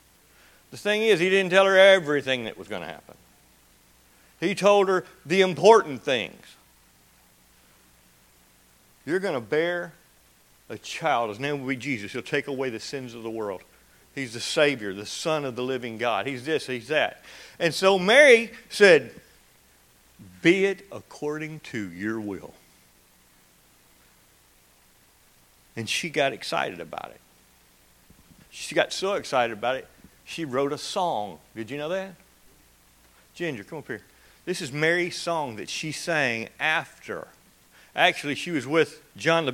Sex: male